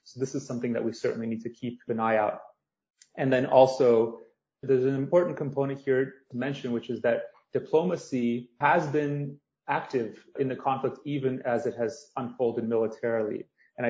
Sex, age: male, 30-49